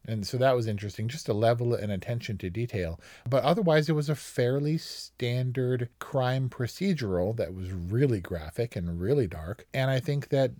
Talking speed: 180 wpm